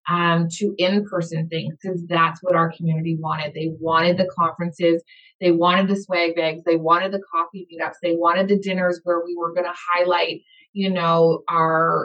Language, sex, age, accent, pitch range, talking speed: English, female, 20-39, American, 170-205 Hz, 190 wpm